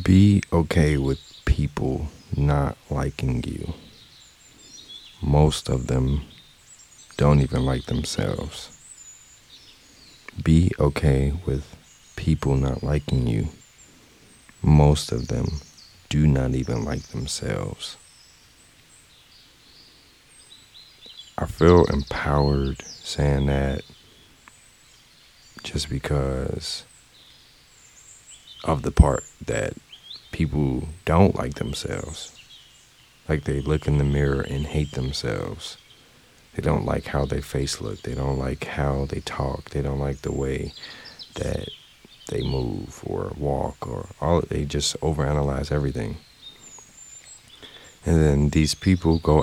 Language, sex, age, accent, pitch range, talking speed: English, male, 40-59, American, 70-80 Hz, 105 wpm